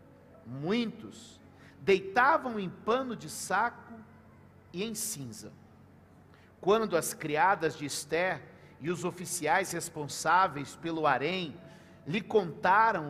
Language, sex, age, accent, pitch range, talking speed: Portuguese, male, 50-69, Brazilian, 170-225 Hz, 100 wpm